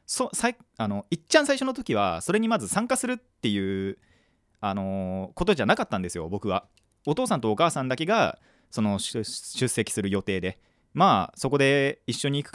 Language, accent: Japanese, native